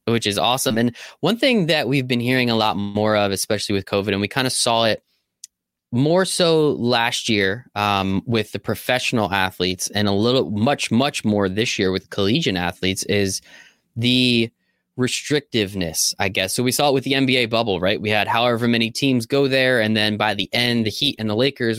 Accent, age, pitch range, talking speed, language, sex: American, 20-39, 105-145 Hz, 205 wpm, English, male